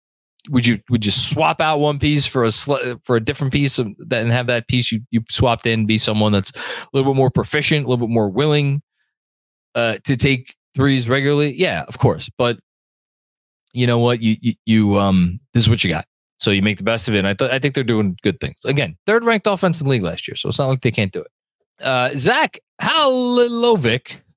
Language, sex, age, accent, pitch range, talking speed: English, male, 20-39, American, 110-160 Hz, 235 wpm